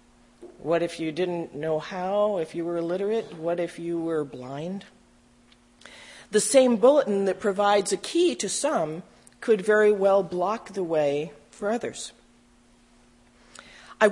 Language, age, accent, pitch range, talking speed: English, 40-59, American, 165-220 Hz, 140 wpm